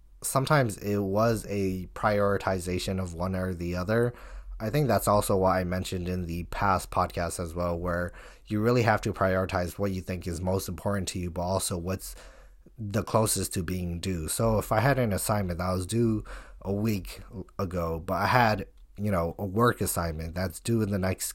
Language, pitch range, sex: English, 90-110 Hz, male